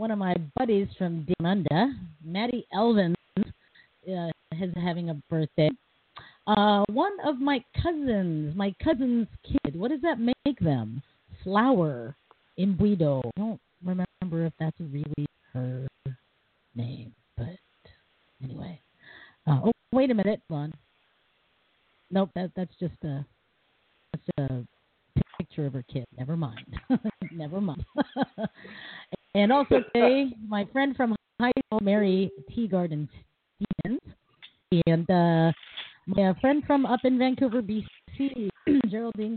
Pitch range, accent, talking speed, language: 160-235 Hz, American, 125 wpm, English